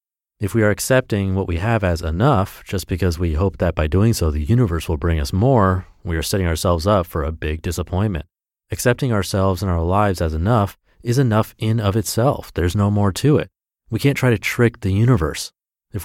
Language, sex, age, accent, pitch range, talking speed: English, male, 30-49, American, 85-115 Hz, 215 wpm